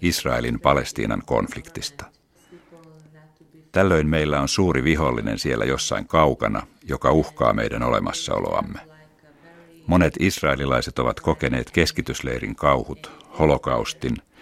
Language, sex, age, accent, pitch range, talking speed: Finnish, male, 60-79, native, 70-110 Hz, 90 wpm